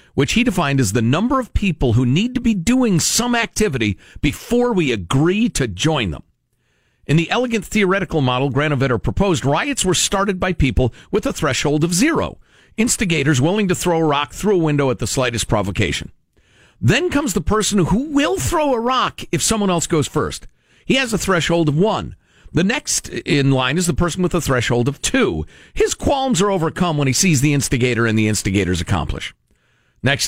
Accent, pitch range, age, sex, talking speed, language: American, 120-195 Hz, 50-69, male, 190 wpm, English